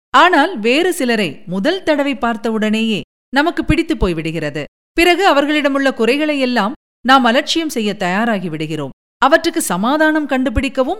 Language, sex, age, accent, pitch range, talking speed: Tamil, female, 50-69, native, 205-300 Hz, 110 wpm